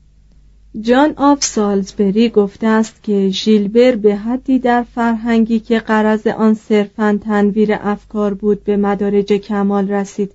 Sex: female